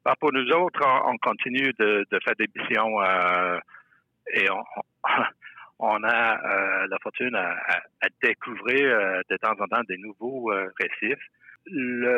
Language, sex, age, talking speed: English, male, 60-79, 155 wpm